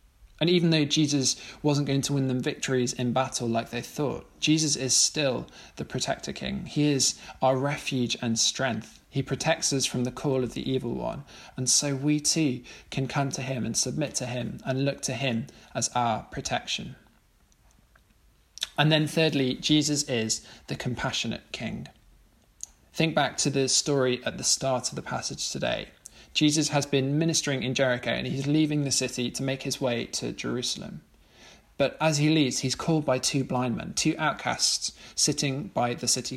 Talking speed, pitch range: 180 wpm, 125-150 Hz